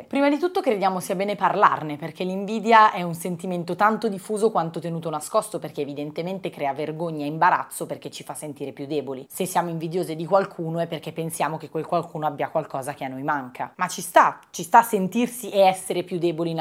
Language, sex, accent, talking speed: Italian, female, native, 205 wpm